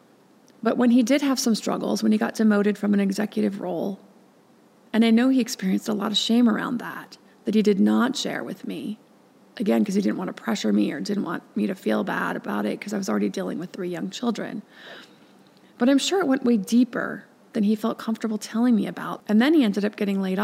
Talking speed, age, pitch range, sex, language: 235 wpm, 30-49, 210-250 Hz, female, English